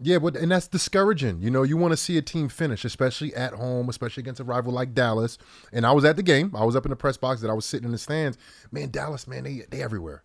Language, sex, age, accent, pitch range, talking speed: English, male, 30-49, American, 135-195 Hz, 275 wpm